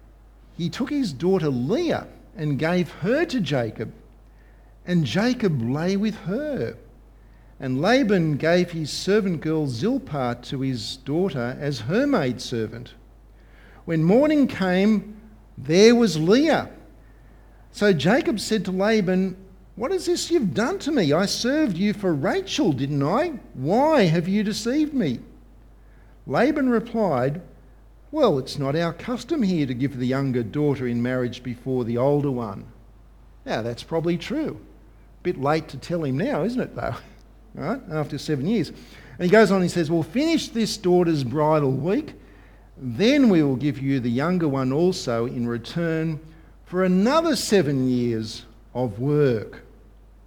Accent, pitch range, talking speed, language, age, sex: Australian, 130-210 Hz, 150 wpm, English, 50-69, male